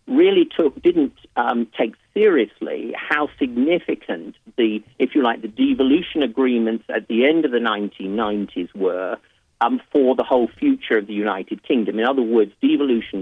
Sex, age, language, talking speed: male, 50-69, English, 160 wpm